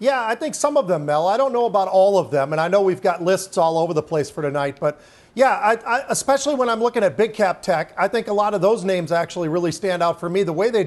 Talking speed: 285 wpm